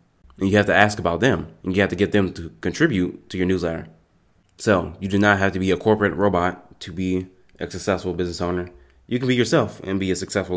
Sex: male